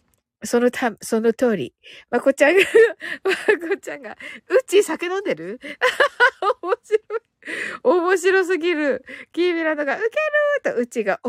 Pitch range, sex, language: 255-380 Hz, female, Japanese